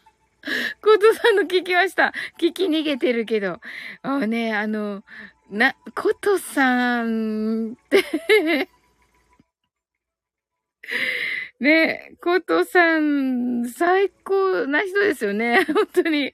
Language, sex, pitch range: Japanese, female, 245-405 Hz